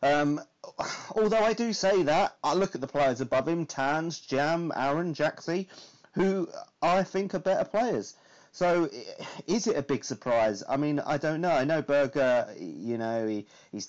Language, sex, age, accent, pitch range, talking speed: English, male, 30-49, British, 110-170 Hz, 175 wpm